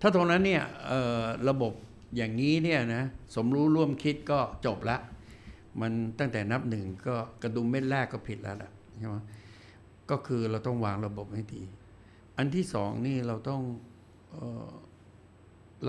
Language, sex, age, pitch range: Thai, male, 60-79, 100-120 Hz